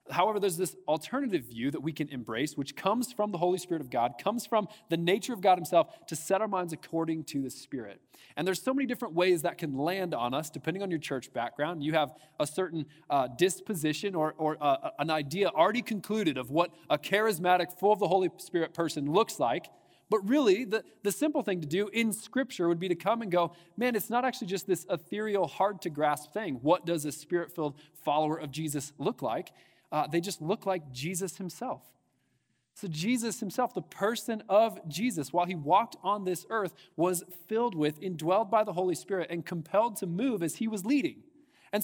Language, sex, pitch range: English, male, 155-205 Hz